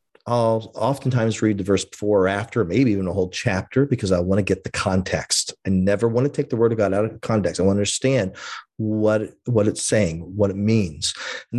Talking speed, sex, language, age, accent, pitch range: 230 wpm, male, English, 40-59, American, 110-145 Hz